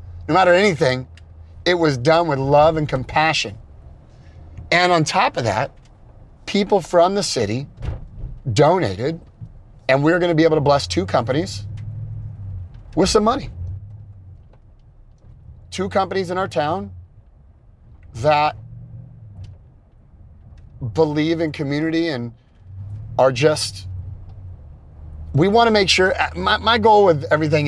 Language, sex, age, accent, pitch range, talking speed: English, male, 40-59, American, 105-155 Hz, 115 wpm